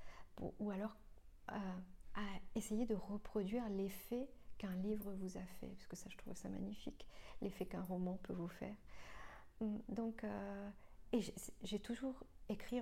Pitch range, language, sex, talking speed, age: 190-235 Hz, French, female, 155 wpm, 40-59